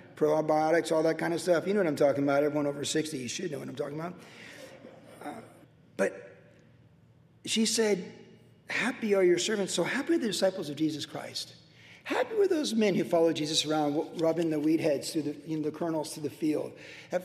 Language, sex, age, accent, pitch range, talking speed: English, male, 40-59, American, 150-180 Hz, 200 wpm